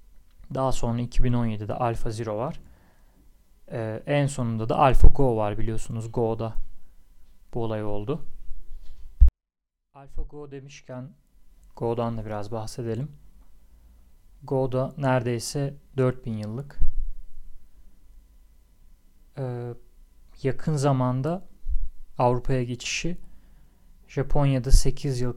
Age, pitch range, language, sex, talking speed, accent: 30-49, 95-130 Hz, Turkish, male, 90 wpm, native